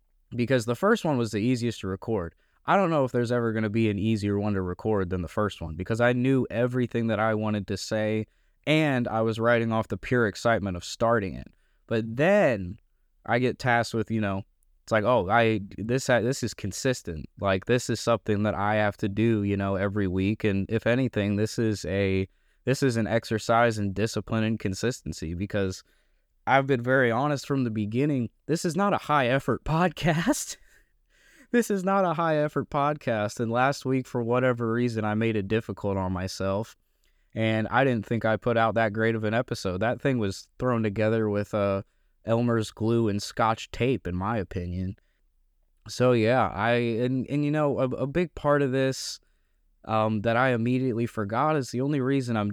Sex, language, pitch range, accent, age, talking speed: male, English, 105-125 Hz, American, 20-39, 200 wpm